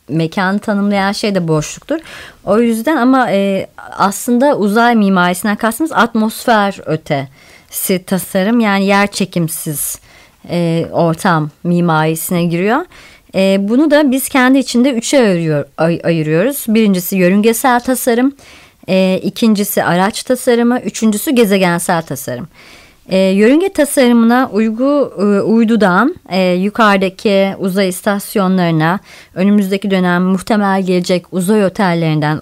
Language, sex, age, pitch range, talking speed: Turkish, male, 30-49, 175-230 Hz, 100 wpm